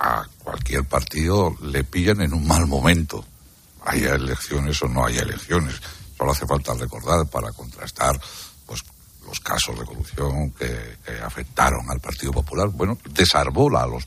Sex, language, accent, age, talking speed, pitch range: male, Spanish, Spanish, 60-79, 155 wpm, 70-105 Hz